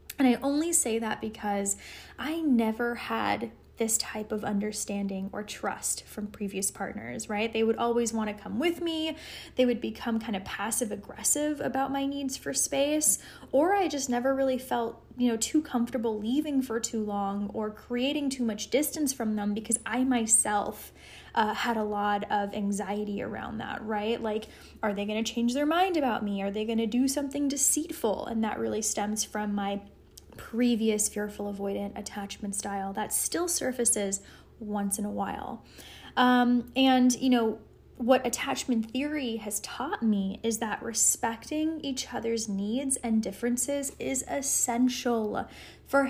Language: English